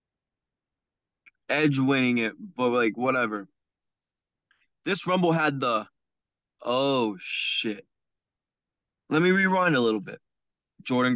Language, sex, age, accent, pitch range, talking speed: English, male, 20-39, American, 120-145 Hz, 100 wpm